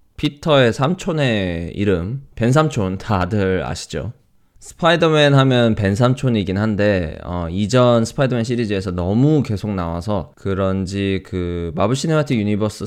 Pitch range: 95-125 Hz